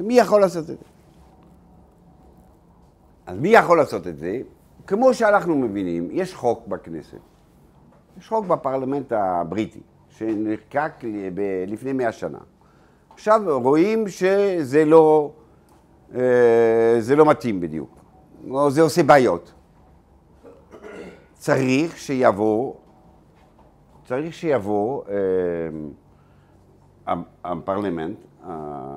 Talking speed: 85 wpm